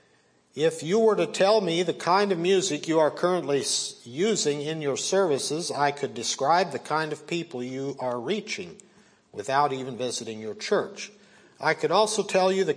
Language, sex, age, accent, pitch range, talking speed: English, male, 50-69, American, 140-195 Hz, 180 wpm